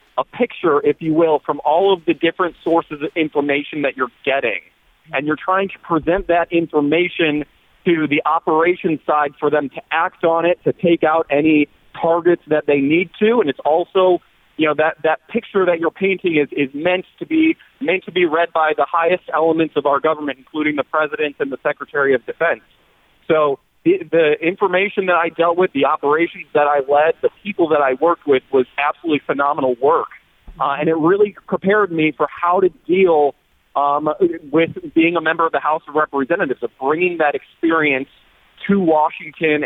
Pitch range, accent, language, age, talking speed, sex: 150-175 Hz, American, English, 40-59, 190 wpm, male